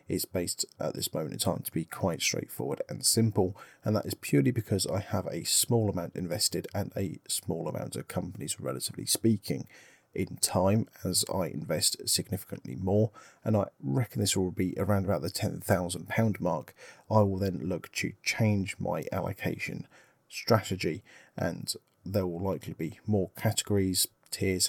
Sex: male